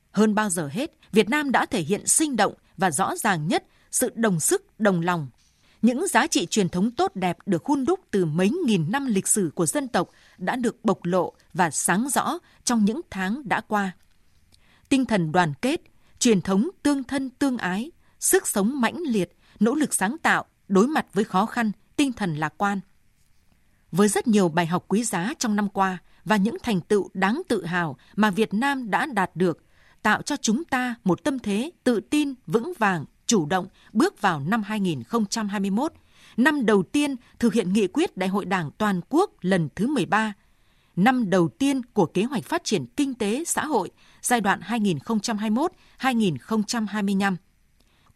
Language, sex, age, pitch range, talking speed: Vietnamese, female, 20-39, 190-260 Hz, 185 wpm